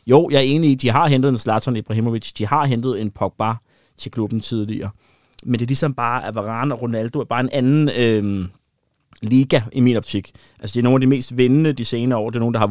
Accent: native